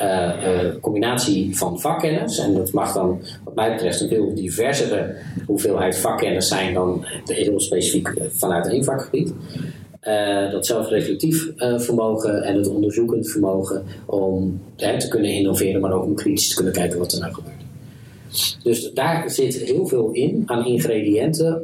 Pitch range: 100-125 Hz